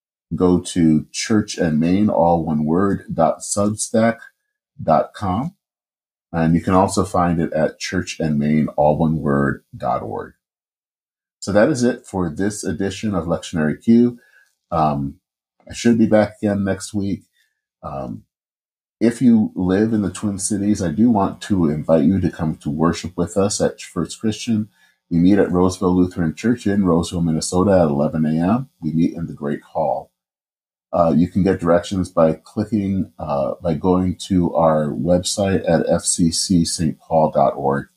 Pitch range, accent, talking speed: 80-100 Hz, American, 135 wpm